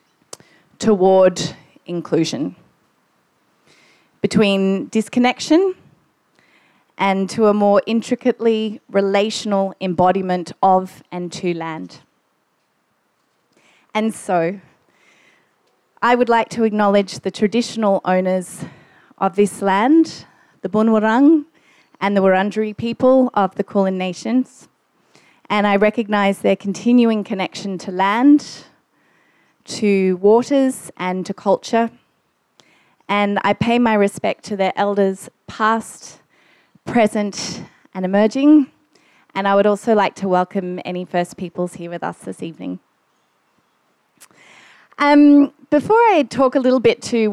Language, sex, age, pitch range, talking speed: English, female, 30-49, 185-230 Hz, 110 wpm